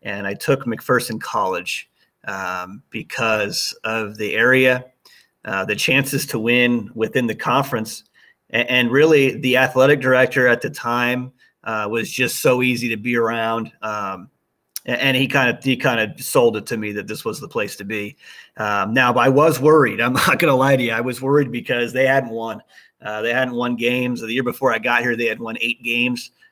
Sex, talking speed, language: male, 195 wpm, English